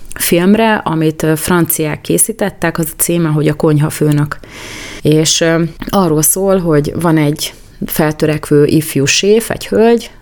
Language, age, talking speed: Hungarian, 30-49, 125 wpm